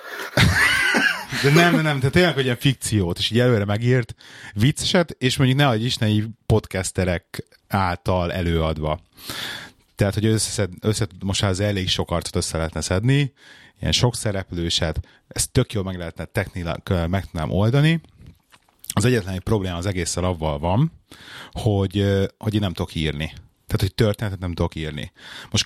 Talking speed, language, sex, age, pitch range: 145 wpm, Hungarian, male, 30-49, 90-110 Hz